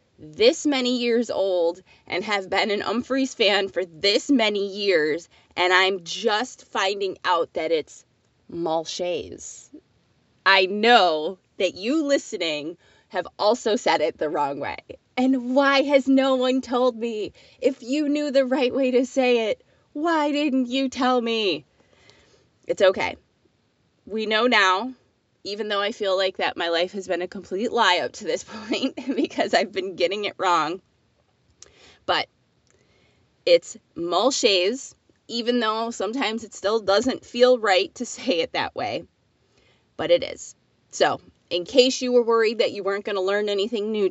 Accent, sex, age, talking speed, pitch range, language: American, female, 20-39, 160 wpm, 190-270 Hz, English